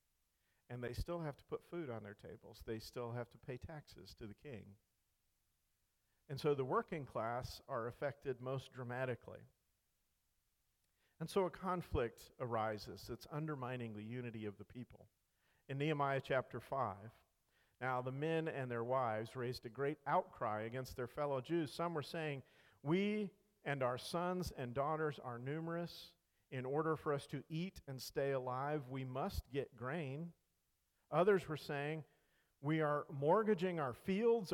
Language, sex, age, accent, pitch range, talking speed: English, male, 50-69, American, 125-170 Hz, 155 wpm